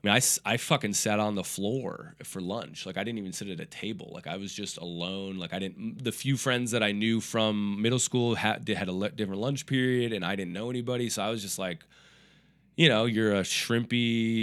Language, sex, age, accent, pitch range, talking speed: English, male, 20-39, American, 105-125 Hz, 240 wpm